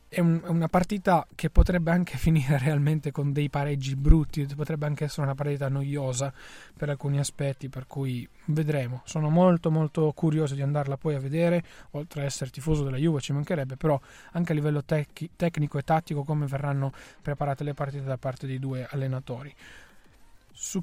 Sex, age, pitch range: male, 30-49, 140-165 Hz